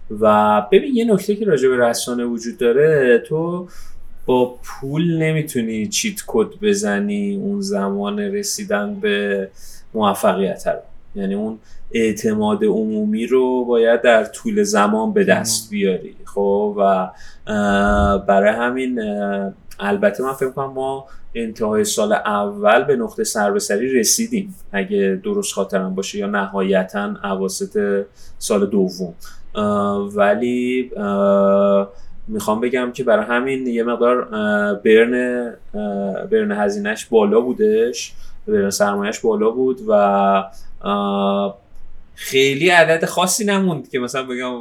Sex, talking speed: male, 120 wpm